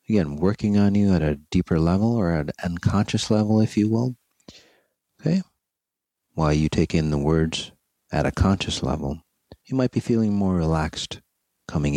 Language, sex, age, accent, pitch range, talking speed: English, male, 40-59, American, 80-105 Hz, 170 wpm